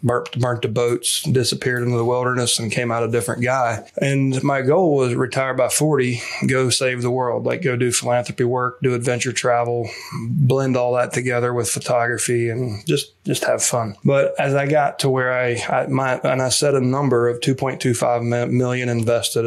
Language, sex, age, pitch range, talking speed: English, male, 20-39, 120-135 Hz, 200 wpm